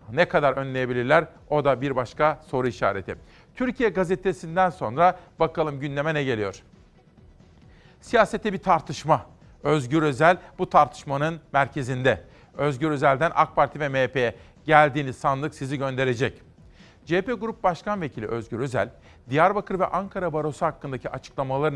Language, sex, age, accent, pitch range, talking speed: Turkish, male, 40-59, native, 140-180 Hz, 125 wpm